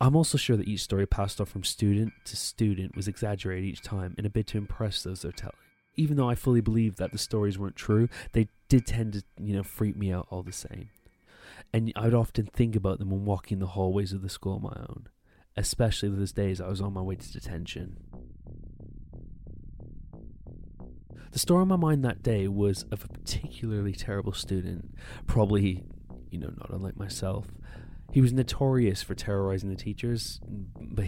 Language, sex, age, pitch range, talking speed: English, male, 20-39, 95-110 Hz, 190 wpm